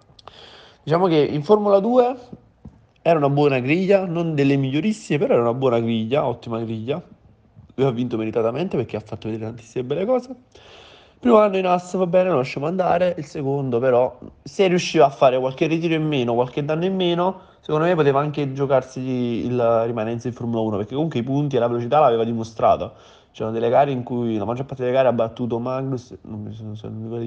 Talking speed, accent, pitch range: 200 wpm, native, 115-140 Hz